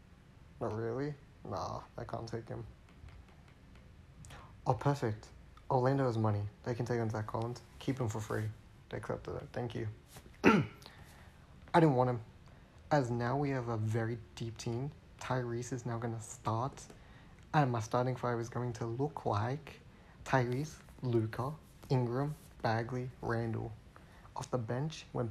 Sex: male